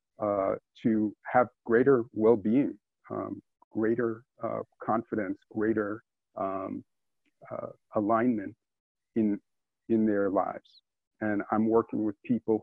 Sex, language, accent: male, English, American